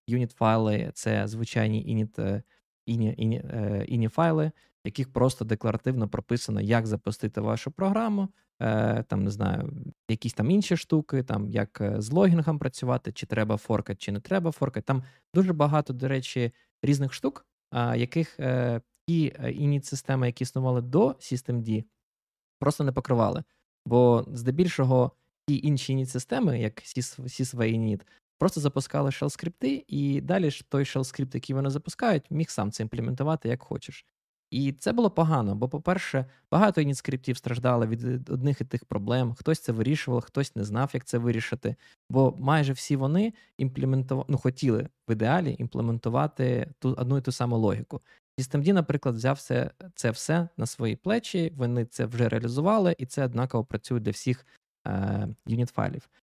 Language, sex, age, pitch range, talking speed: Ukrainian, male, 20-39, 115-145 Hz, 145 wpm